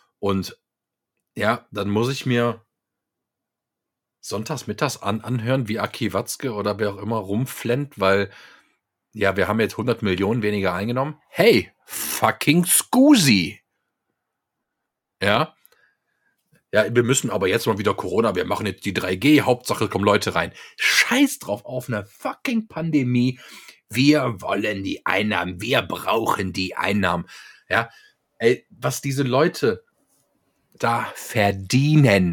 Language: German